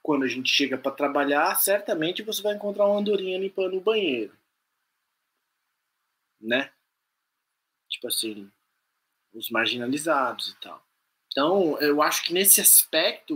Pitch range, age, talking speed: 145-230 Hz, 20-39, 125 wpm